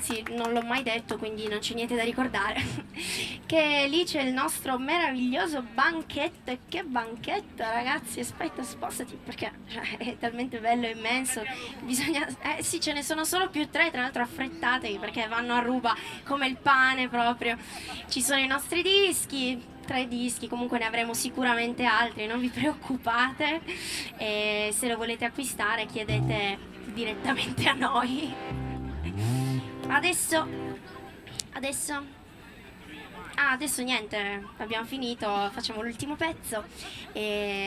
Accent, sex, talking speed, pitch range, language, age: native, female, 130 wpm, 215-260 Hz, Italian, 20-39